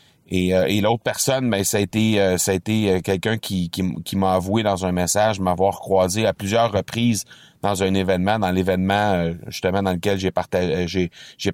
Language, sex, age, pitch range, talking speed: French, male, 30-49, 95-110 Hz, 215 wpm